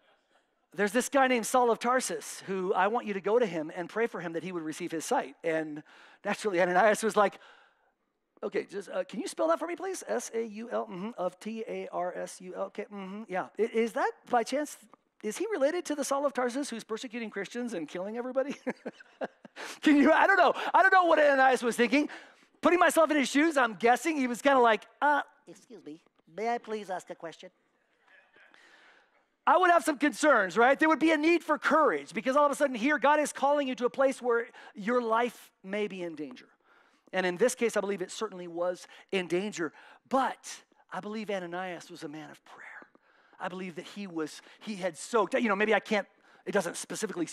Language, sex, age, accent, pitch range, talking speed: English, male, 40-59, American, 185-270 Hz, 210 wpm